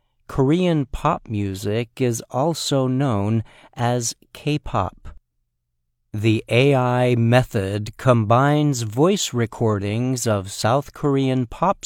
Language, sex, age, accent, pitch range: Chinese, male, 50-69, American, 105-135 Hz